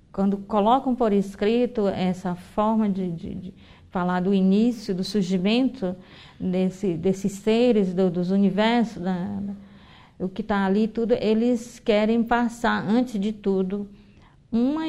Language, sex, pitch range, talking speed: Portuguese, female, 195-225 Hz, 135 wpm